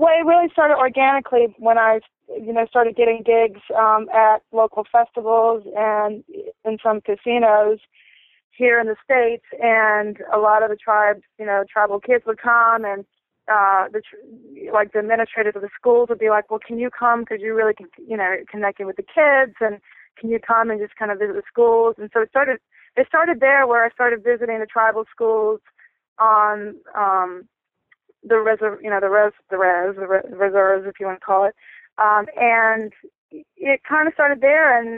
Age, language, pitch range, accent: 20-39, English, 200-235 Hz, American